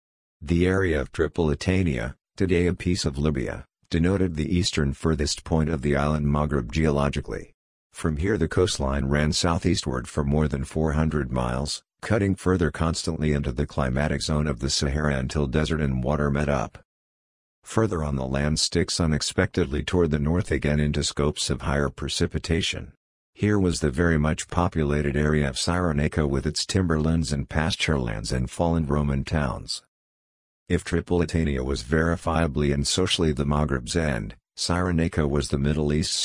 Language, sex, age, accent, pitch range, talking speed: English, male, 50-69, American, 75-85 Hz, 155 wpm